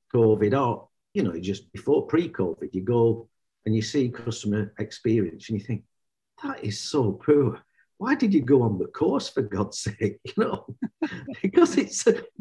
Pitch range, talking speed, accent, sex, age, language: 105-140 Hz, 170 wpm, British, male, 50-69, English